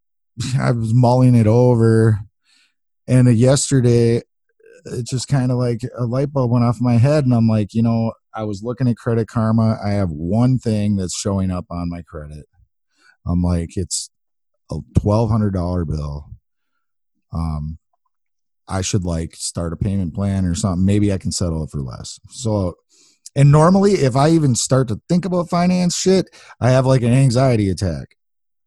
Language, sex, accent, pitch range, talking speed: English, male, American, 100-135 Hz, 170 wpm